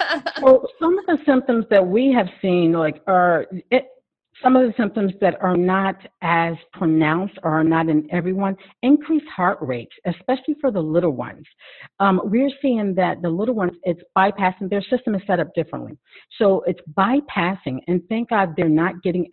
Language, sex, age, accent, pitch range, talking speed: English, female, 50-69, American, 165-200 Hz, 180 wpm